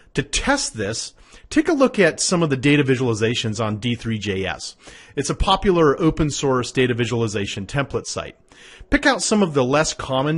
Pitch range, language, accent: 115-180 Hz, English, American